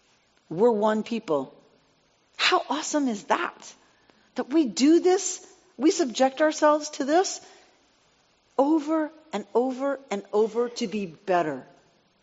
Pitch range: 175-260 Hz